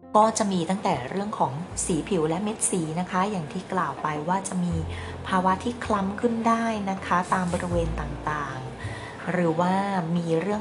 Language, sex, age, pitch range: Thai, female, 20-39, 155-200 Hz